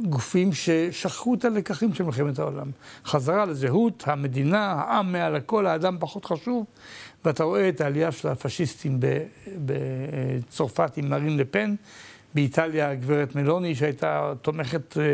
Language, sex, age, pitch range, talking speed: Hebrew, male, 60-79, 145-190 Hz, 125 wpm